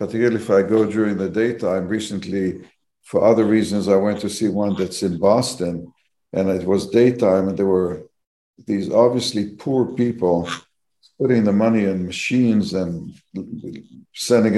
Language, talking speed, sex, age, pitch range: English, 150 wpm, male, 60-79, 95-120 Hz